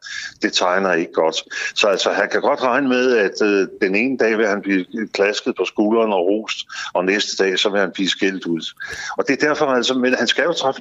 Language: Danish